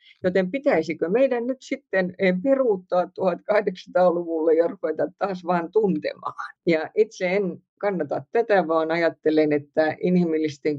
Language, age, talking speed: Finnish, 50-69, 115 wpm